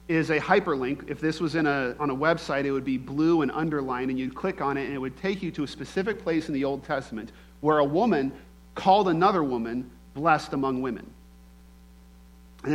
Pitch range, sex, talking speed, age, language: 115-165 Hz, male, 210 wpm, 40-59, English